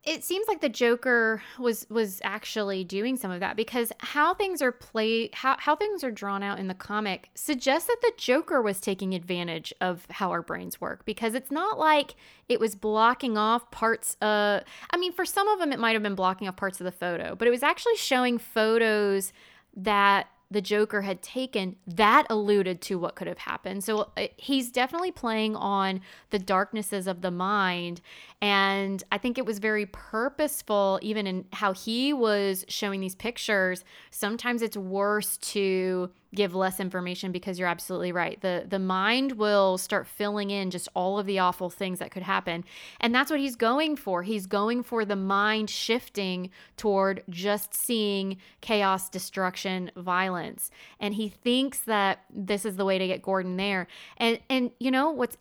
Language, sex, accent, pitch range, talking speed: English, female, American, 190-235 Hz, 185 wpm